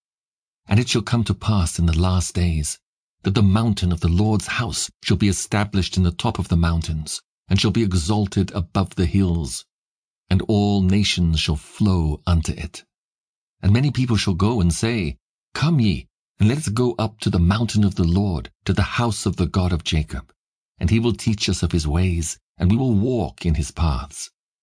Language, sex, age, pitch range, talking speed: English, male, 50-69, 85-105 Hz, 200 wpm